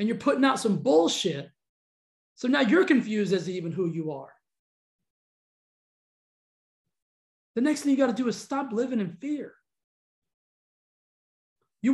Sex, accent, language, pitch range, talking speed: male, American, English, 195-275 Hz, 135 wpm